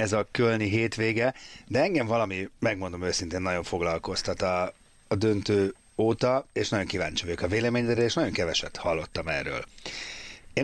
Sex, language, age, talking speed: male, Hungarian, 30-49, 150 wpm